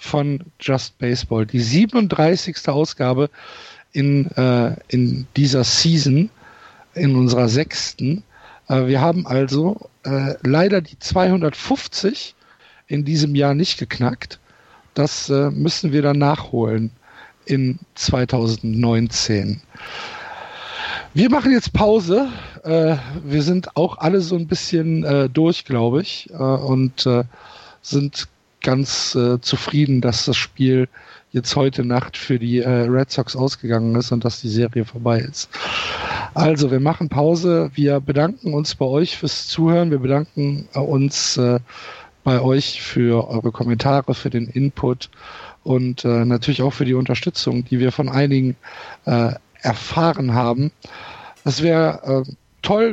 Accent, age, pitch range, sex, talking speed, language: German, 50-69, 125-160 Hz, male, 135 wpm, German